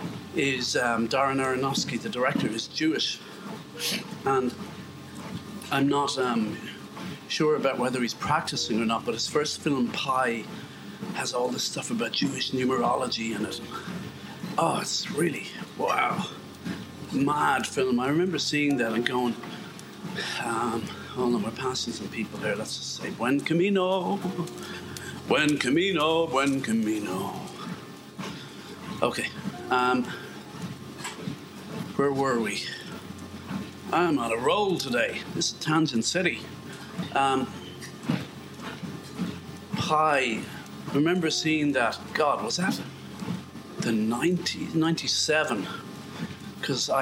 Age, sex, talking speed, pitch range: 40-59, male, 115 wpm, 125-165 Hz